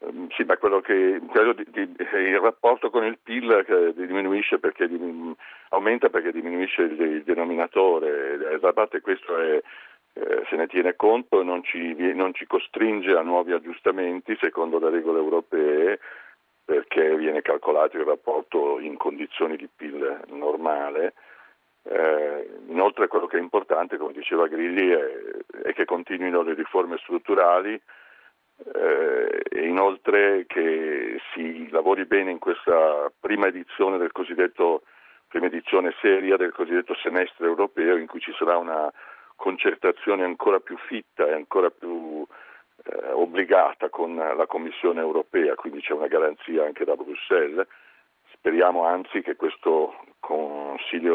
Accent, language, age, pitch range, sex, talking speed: native, Italian, 50-69, 305-445 Hz, male, 135 wpm